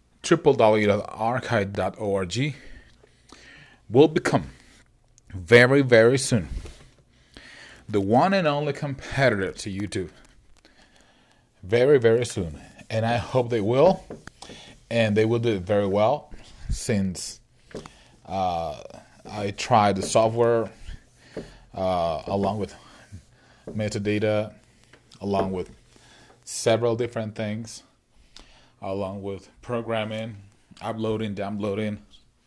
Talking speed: 90 wpm